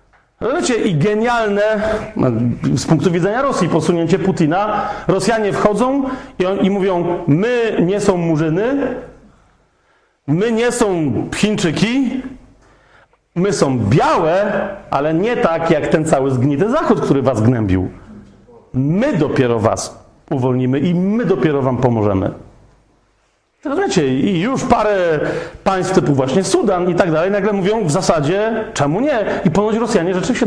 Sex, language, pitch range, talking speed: male, Polish, 165-225 Hz, 125 wpm